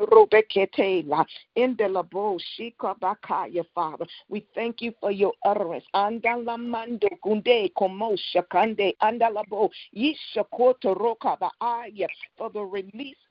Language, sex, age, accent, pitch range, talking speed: English, female, 50-69, American, 215-285 Hz, 45 wpm